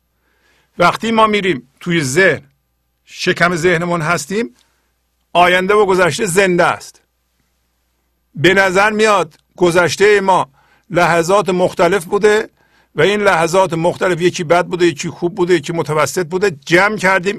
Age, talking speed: 50-69, 125 wpm